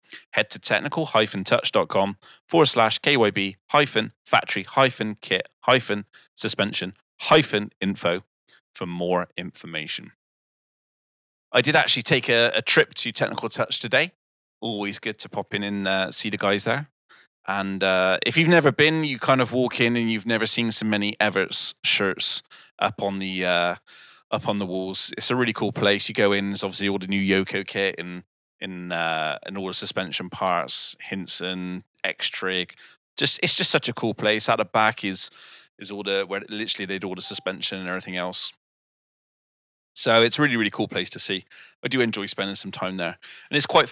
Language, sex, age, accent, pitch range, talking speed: English, male, 30-49, British, 95-110 Hz, 170 wpm